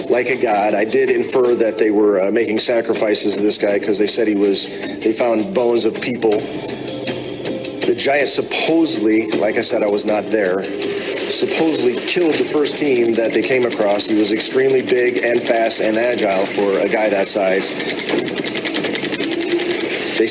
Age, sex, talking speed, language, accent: 40-59, male, 170 wpm, English, American